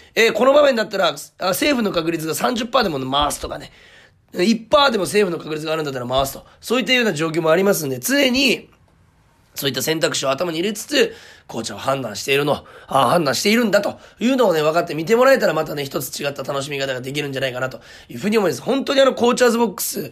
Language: Japanese